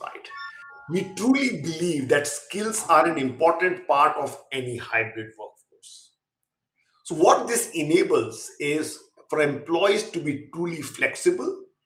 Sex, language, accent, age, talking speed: male, English, Indian, 50-69, 125 wpm